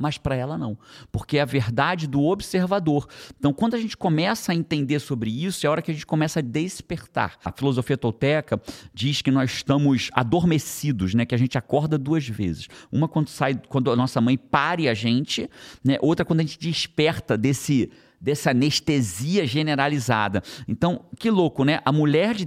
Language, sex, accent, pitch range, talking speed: Portuguese, male, Brazilian, 135-180 Hz, 185 wpm